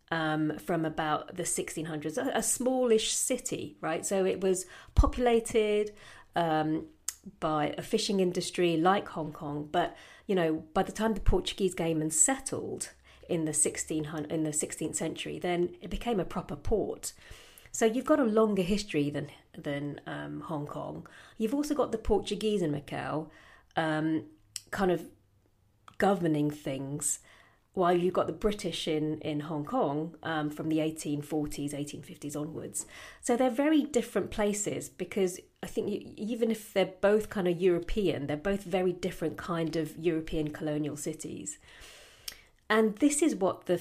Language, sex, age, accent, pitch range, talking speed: English, female, 30-49, British, 155-205 Hz, 155 wpm